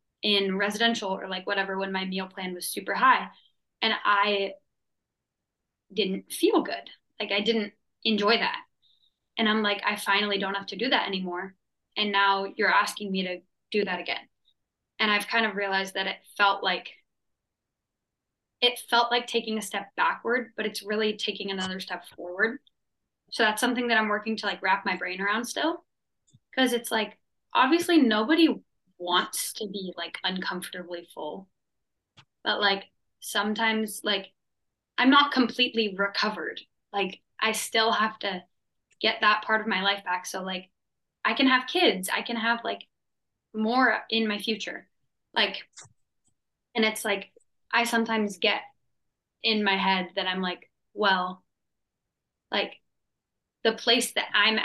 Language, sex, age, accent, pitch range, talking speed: English, female, 10-29, American, 190-225 Hz, 155 wpm